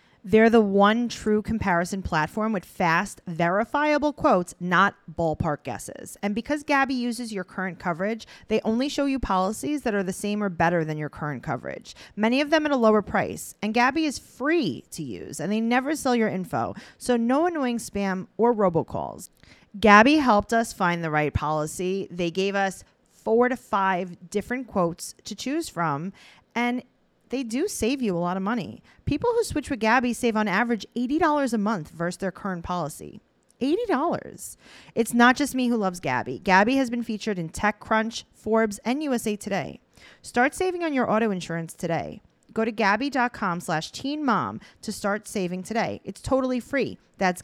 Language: English